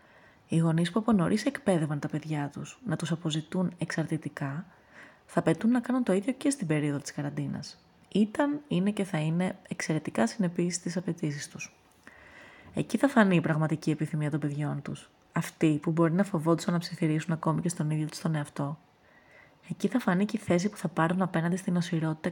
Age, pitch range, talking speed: 20-39, 155-200 Hz, 185 wpm